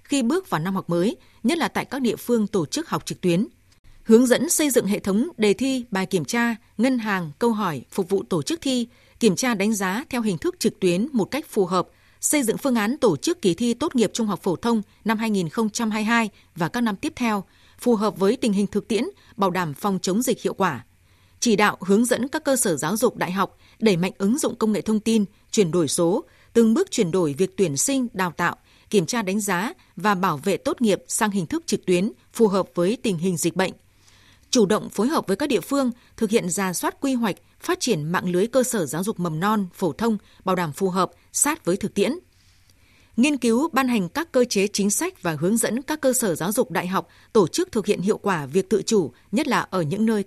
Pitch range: 185-235 Hz